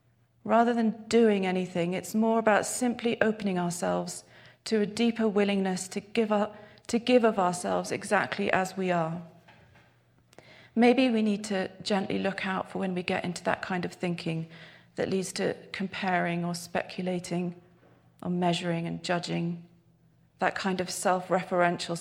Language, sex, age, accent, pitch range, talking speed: English, female, 40-59, British, 170-205 Hz, 150 wpm